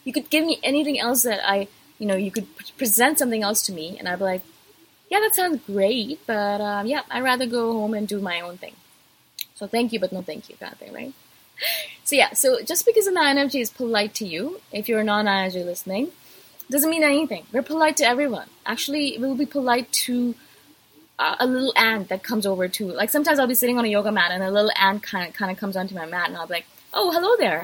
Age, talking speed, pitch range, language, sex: 20-39, 240 wpm, 195-265 Hz, English, female